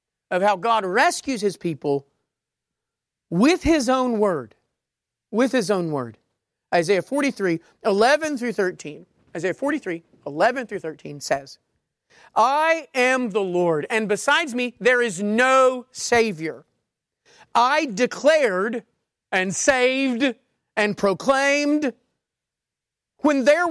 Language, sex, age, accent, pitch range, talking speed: English, male, 40-59, American, 185-300 Hz, 110 wpm